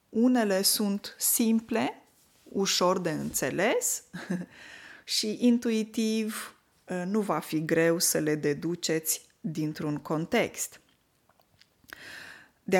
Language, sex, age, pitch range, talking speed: Romanian, female, 20-39, 165-225 Hz, 85 wpm